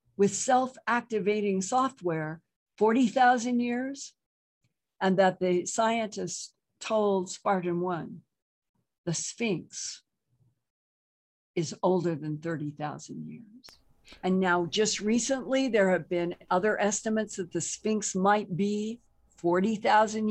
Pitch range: 170-215 Hz